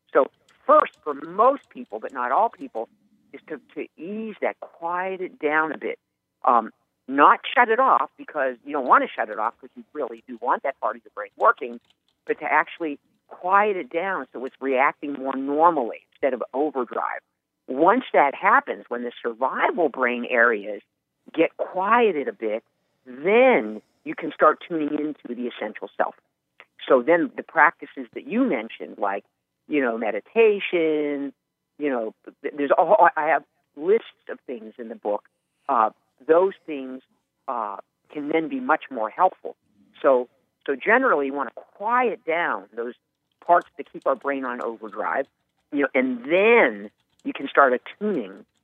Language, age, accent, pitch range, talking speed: English, 50-69, American, 130-180 Hz, 165 wpm